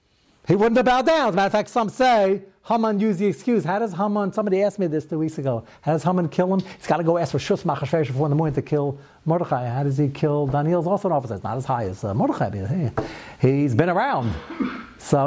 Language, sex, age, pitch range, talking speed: English, male, 60-79, 140-190 Hz, 255 wpm